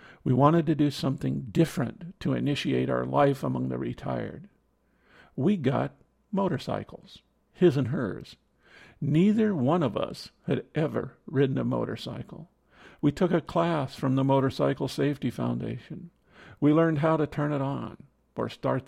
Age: 50-69